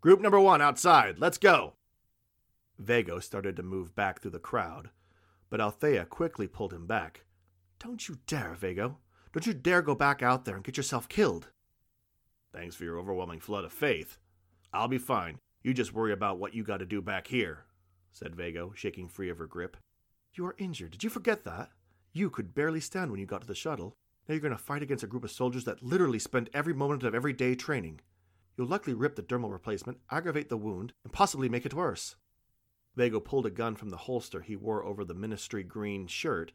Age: 40-59